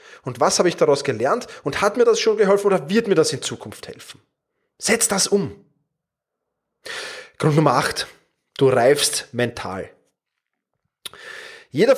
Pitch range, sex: 200-330 Hz, male